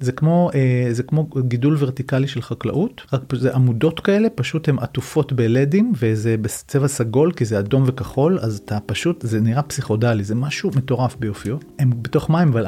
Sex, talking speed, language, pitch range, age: male, 175 wpm, Hebrew, 115-145 Hz, 30-49